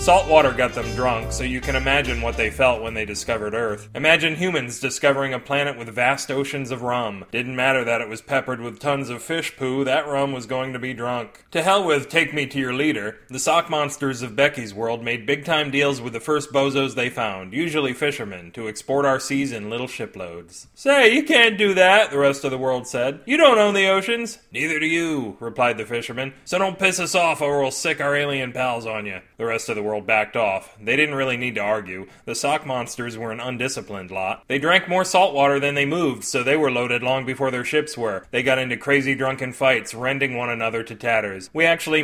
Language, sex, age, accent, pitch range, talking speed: English, male, 30-49, American, 115-145 Hz, 230 wpm